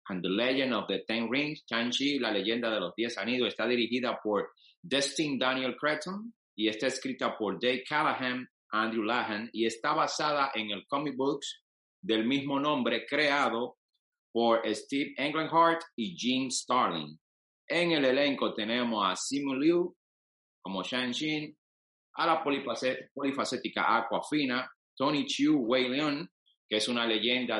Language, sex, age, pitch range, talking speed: Spanish, male, 30-49, 110-140 Hz, 140 wpm